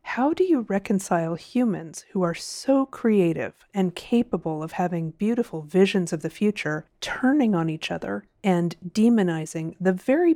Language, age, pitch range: English, 30-49, 170-210 Hz